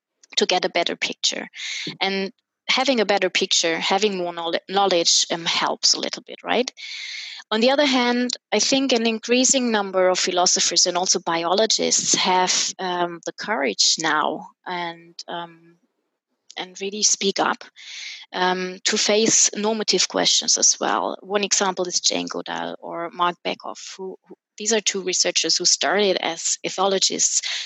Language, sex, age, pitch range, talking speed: English, female, 20-39, 170-205 Hz, 150 wpm